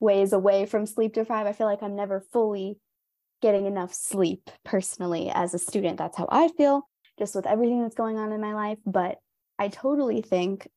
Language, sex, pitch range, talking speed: English, female, 185-215 Hz, 200 wpm